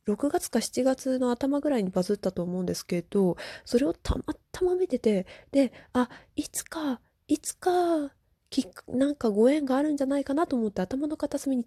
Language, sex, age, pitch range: Japanese, female, 20-39, 210-280 Hz